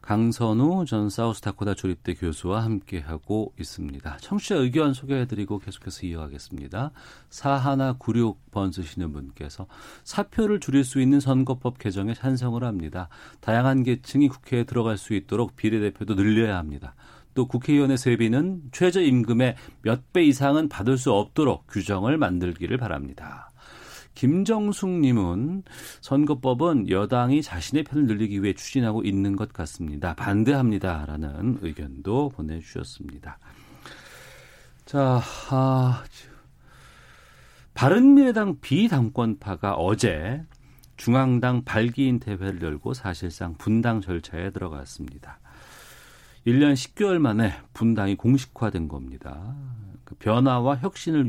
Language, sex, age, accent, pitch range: Korean, male, 40-59, native, 95-135 Hz